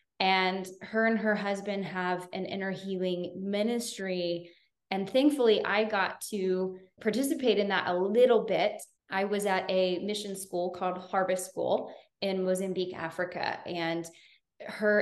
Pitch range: 180-215 Hz